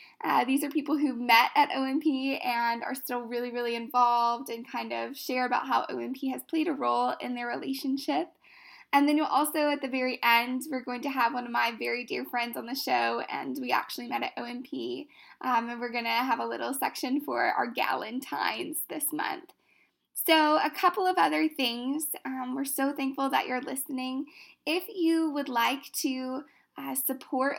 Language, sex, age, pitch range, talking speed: English, female, 10-29, 240-285 Hz, 195 wpm